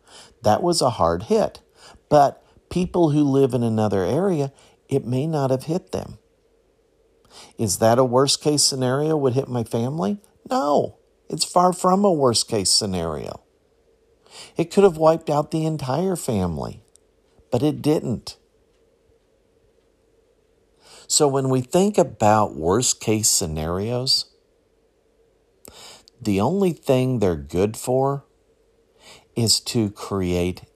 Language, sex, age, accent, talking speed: English, male, 50-69, American, 125 wpm